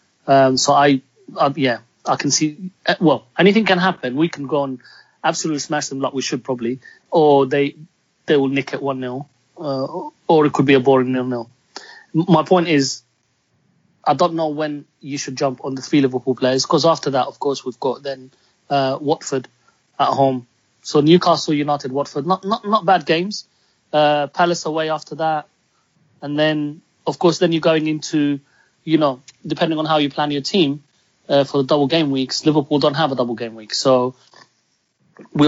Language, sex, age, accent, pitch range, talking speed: English, male, 30-49, British, 135-155 Hz, 190 wpm